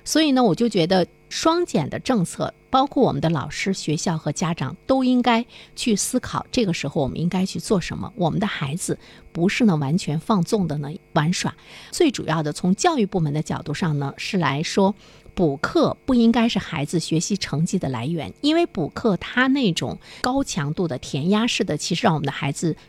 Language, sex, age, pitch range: Chinese, female, 50-69, 155-225 Hz